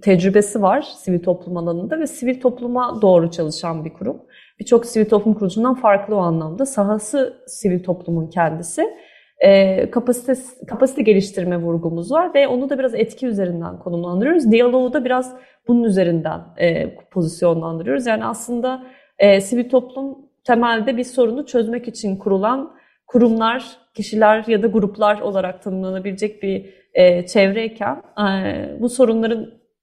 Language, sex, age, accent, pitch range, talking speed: Turkish, female, 30-49, native, 190-245 Hz, 125 wpm